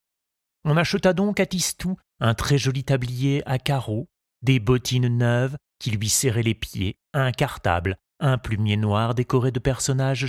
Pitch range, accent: 105-135 Hz, French